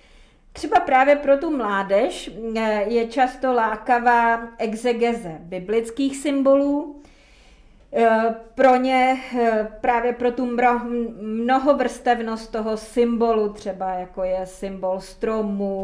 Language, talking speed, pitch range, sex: Czech, 90 wpm, 200-245 Hz, female